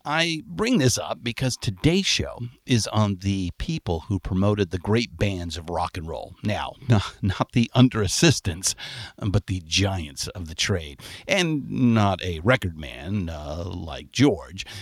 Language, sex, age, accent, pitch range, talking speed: English, male, 50-69, American, 90-115 Hz, 160 wpm